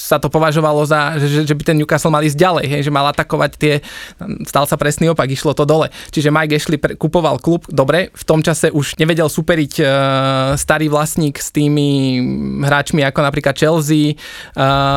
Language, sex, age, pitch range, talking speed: Slovak, male, 20-39, 145-155 Hz, 185 wpm